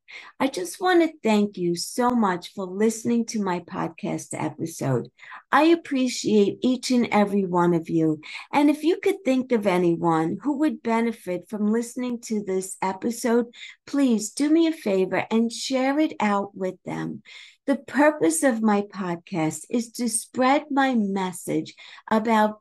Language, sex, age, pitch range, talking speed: English, female, 50-69, 195-270 Hz, 155 wpm